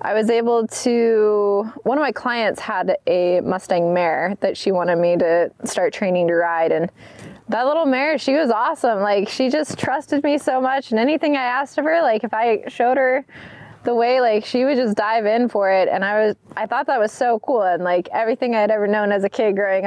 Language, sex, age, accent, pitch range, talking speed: English, female, 20-39, American, 215-275 Hz, 230 wpm